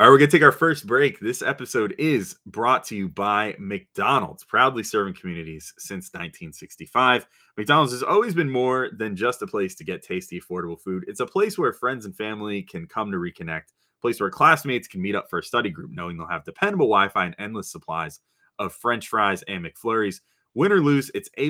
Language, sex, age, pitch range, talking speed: English, male, 30-49, 85-135 Hz, 210 wpm